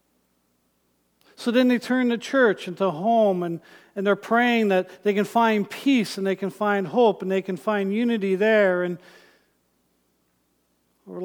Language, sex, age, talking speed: English, male, 50-69, 170 wpm